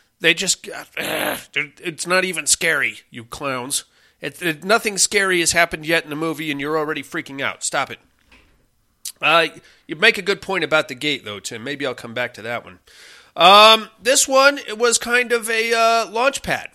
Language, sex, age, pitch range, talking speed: English, male, 30-49, 140-190 Hz, 195 wpm